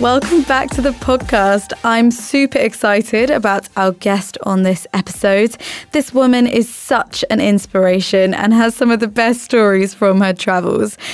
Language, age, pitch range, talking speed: English, 20-39, 195-245 Hz, 160 wpm